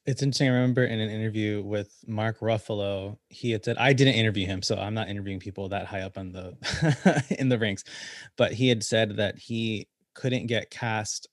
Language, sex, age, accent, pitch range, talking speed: English, male, 20-39, American, 105-130 Hz, 205 wpm